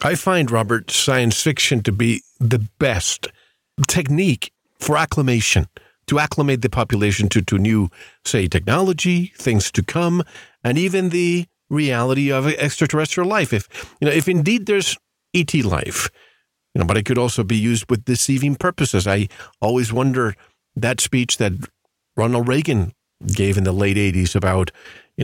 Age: 40-59